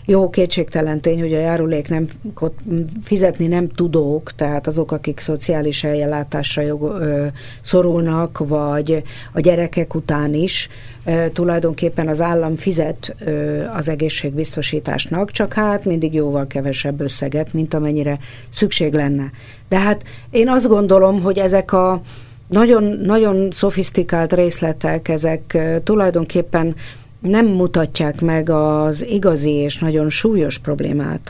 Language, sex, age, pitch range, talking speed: Hungarian, female, 50-69, 150-185 Hz, 110 wpm